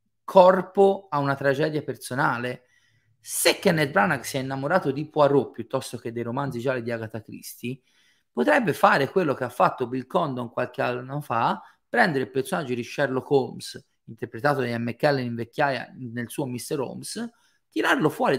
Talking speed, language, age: 165 wpm, Italian, 30-49